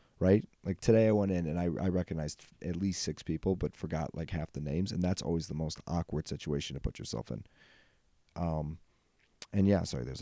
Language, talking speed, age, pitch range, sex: English, 210 wpm, 30-49, 85-105 Hz, male